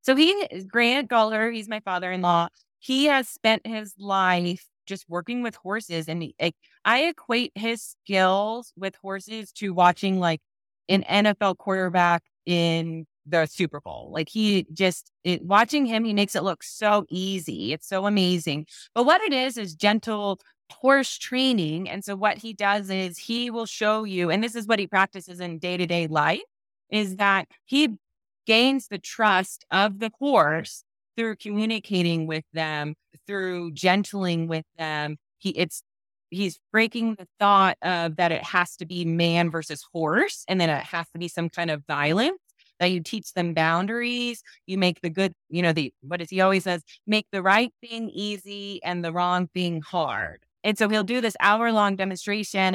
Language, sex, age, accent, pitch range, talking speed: English, female, 20-39, American, 170-215 Hz, 180 wpm